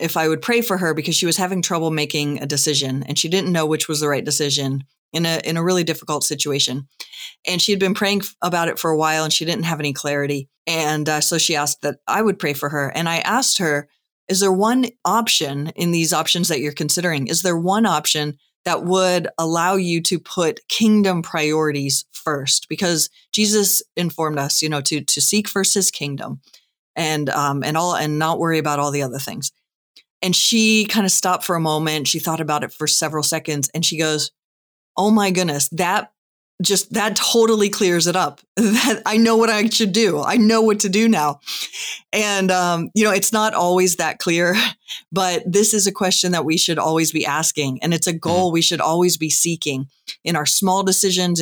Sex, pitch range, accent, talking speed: female, 150-190 Hz, American, 210 wpm